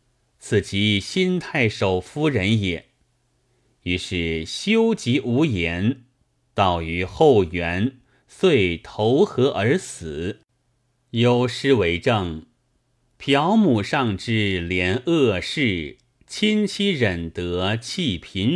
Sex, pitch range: male, 95-130 Hz